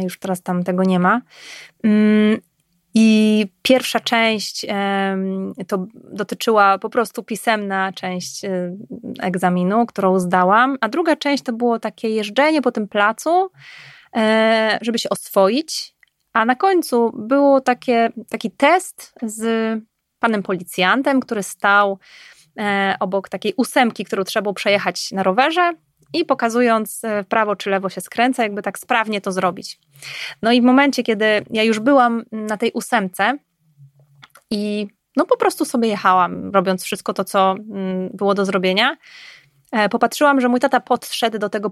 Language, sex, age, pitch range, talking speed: Polish, female, 20-39, 195-240 Hz, 135 wpm